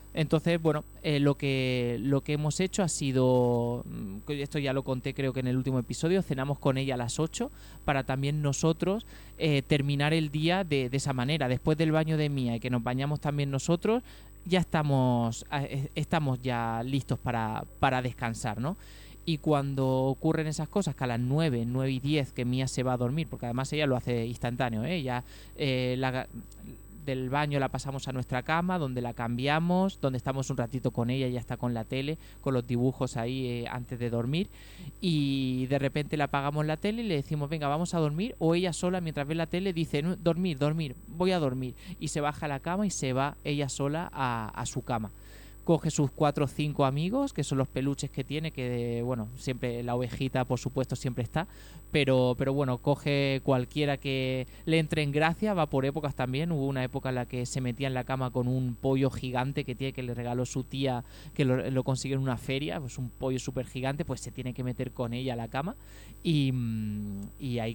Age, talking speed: 20-39, 210 wpm